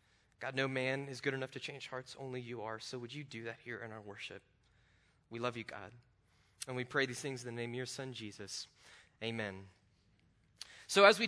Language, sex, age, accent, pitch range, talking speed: English, male, 20-39, American, 130-210 Hz, 220 wpm